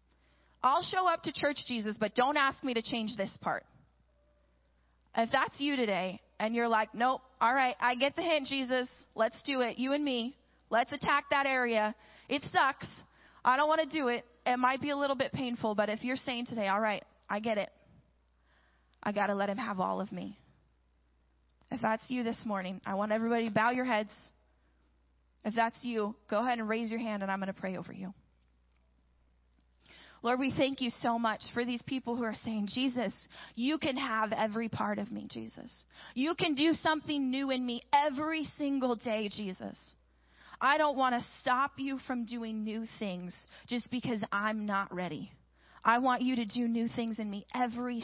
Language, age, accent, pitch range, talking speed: English, 20-39, American, 195-255 Hz, 195 wpm